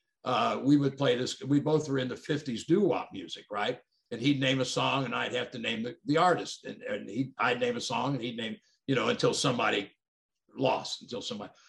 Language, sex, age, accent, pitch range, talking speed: English, male, 60-79, American, 130-165 Hz, 220 wpm